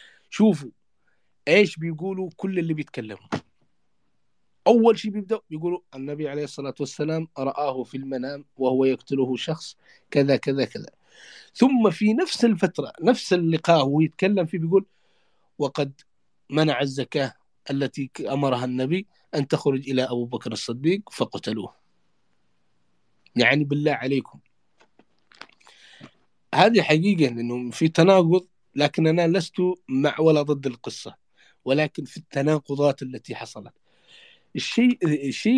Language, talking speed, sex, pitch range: English, 115 wpm, male, 130-175 Hz